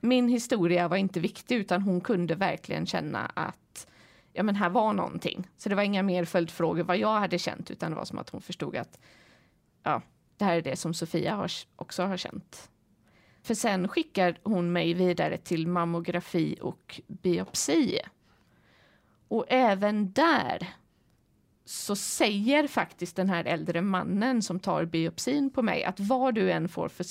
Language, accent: Swedish, native